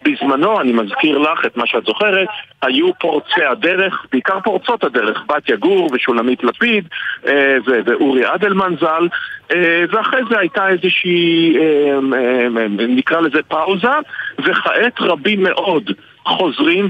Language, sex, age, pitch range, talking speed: Hebrew, male, 50-69, 145-195 Hz, 130 wpm